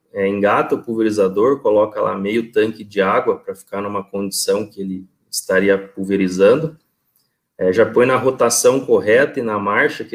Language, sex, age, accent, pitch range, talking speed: Portuguese, male, 20-39, Brazilian, 110-145 Hz, 155 wpm